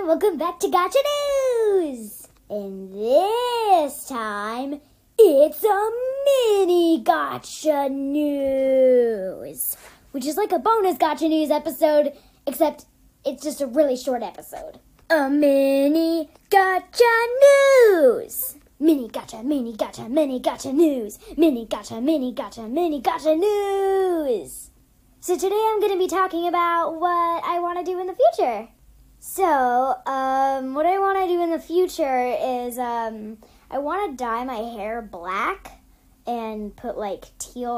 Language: English